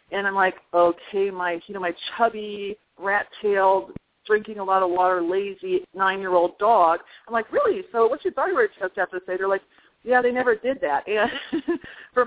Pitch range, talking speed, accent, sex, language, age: 190-250 Hz, 190 wpm, American, female, English, 40-59